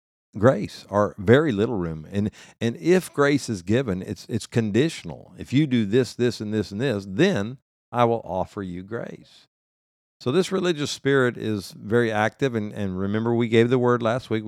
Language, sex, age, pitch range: English, male, 50-69, 95-120 Hz